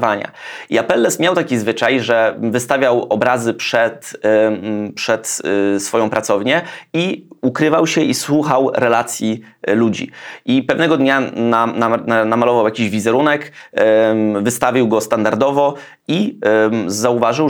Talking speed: 105 wpm